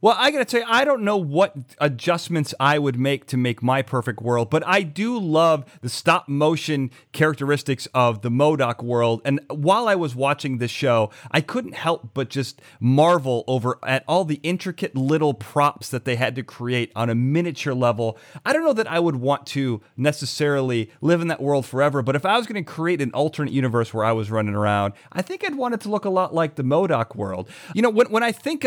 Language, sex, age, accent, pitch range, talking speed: English, male, 30-49, American, 125-170 Hz, 220 wpm